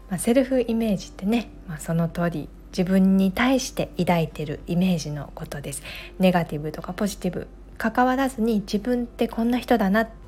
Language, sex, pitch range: Japanese, female, 175-225 Hz